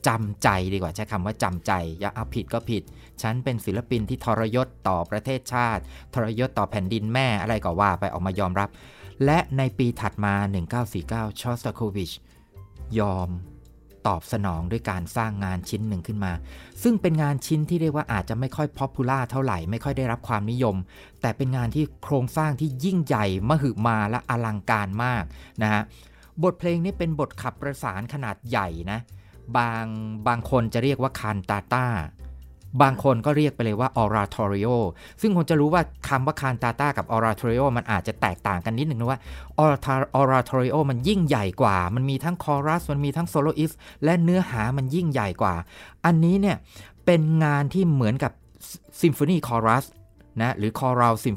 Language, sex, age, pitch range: Thai, male, 30-49, 100-140 Hz